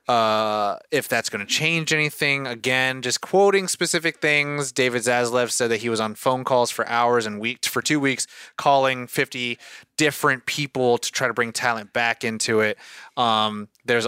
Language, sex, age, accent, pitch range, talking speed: English, male, 20-39, American, 115-150 Hz, 180 wpm